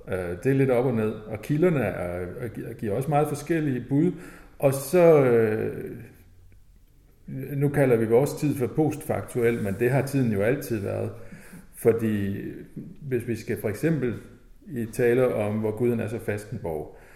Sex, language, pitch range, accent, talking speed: male, Danish, 105-130 Hz, native, 160 wpm